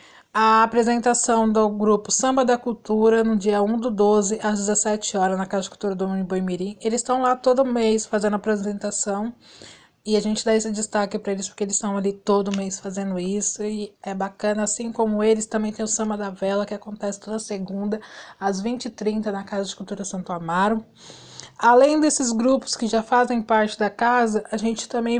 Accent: Brazilian